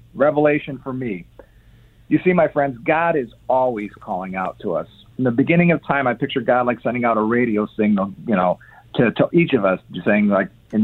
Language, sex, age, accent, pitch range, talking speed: English, male, 50-69, American, 110-145 Hz, 210 wpm